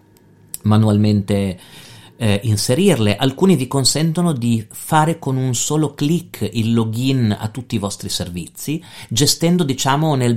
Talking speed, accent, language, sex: 125 wpm, native, Italian, male